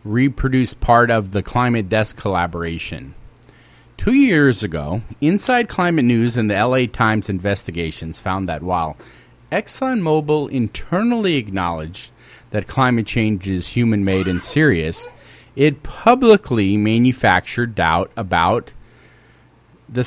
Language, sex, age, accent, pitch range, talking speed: English, male, 30-49, American, 105-150 Hz, 110 wpm